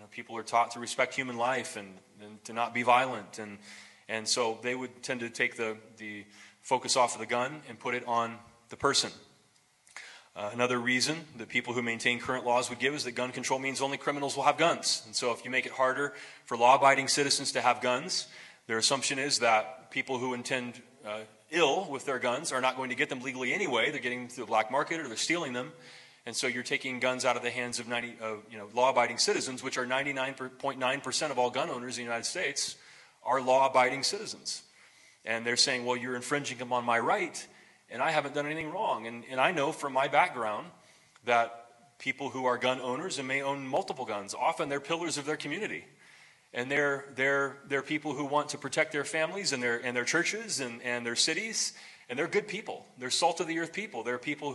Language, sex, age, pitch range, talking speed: English, male, 20-39, 120-140 Hz, 220 wpm